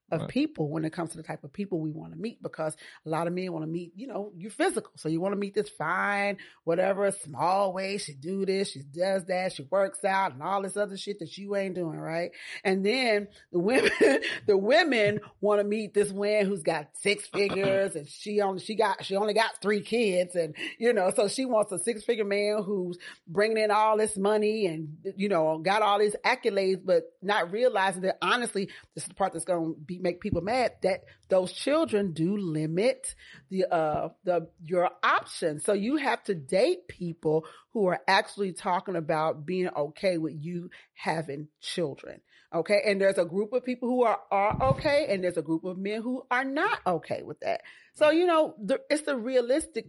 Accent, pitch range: American, 170-215 Hz